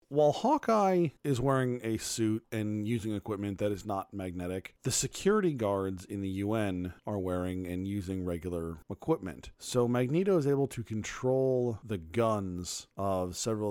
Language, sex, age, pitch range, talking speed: English, male, 40-59, 95-130 Hz, 155 wpm